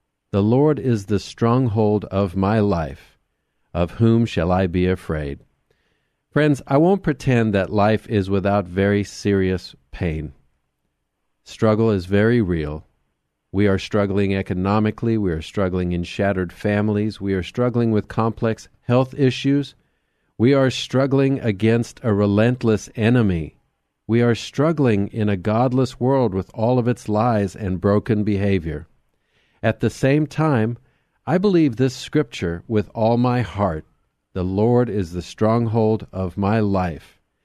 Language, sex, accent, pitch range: English, male, American, 95-125 Hz